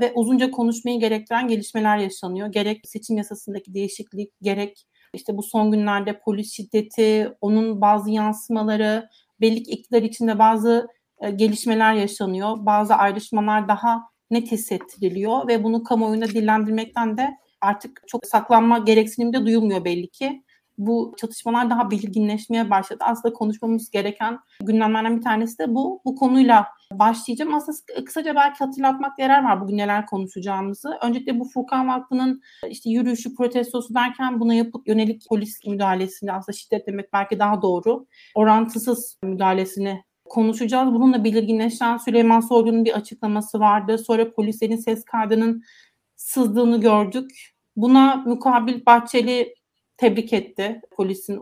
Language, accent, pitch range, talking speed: Turkish, native, 210-240 Hz, 130 wpm